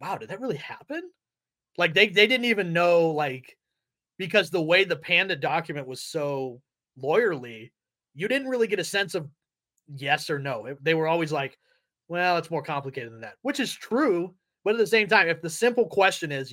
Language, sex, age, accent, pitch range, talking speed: English, male, 30-49, American, 135-170 Hz, 200 wpm